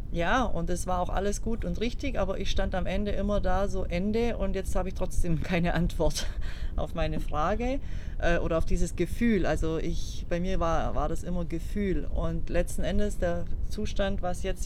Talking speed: 200 wpm